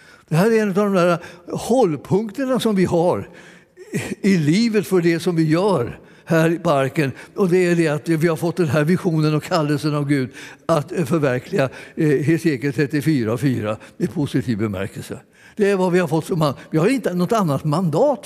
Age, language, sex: 60-79, Swedish, male